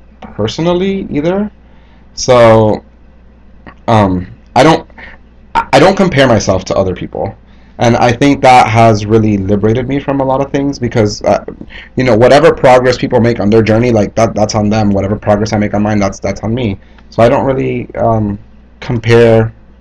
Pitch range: 100-125 Hz